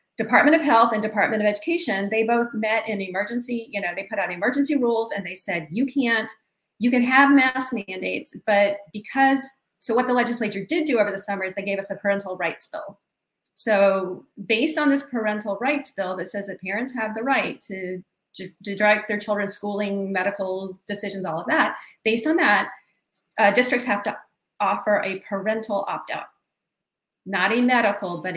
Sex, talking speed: female, 190 wpm